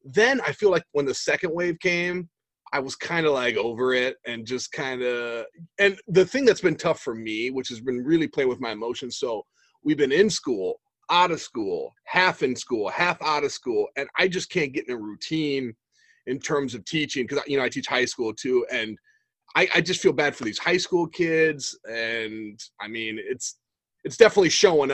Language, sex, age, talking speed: English, male, 30-49, 215 wpm